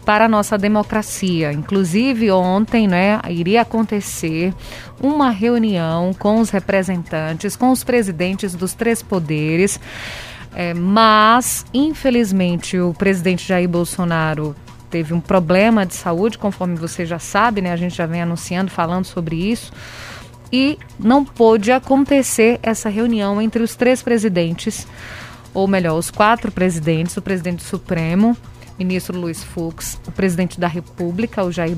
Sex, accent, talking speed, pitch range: female, Brazilian, 130 wpm, 180-240 Hz